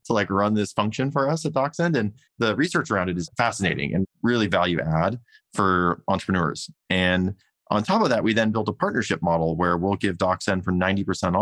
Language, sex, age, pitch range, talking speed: English, male, 20-39, 85-105 Hz, 205 wpm